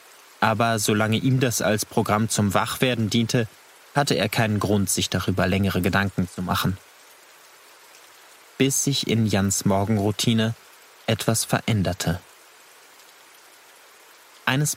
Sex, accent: male, German